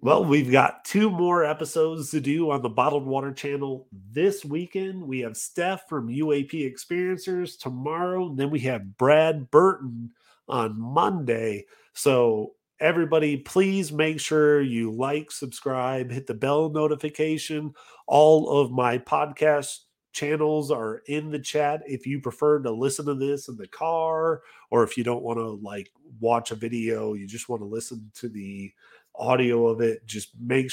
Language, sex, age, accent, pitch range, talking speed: English, male, 30-49, American, 120-155 Hz, 160 wpm